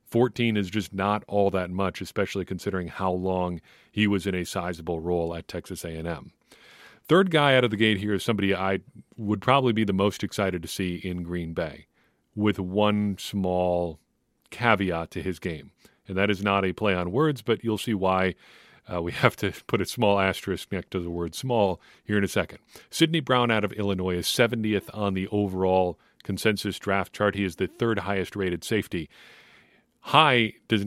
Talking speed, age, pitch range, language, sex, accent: 190 wpm, 40-59, 95-115 Hz, English, male, American